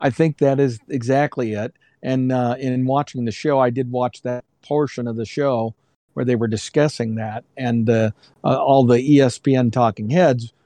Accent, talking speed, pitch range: American, 185 wpm, 120-135 Hz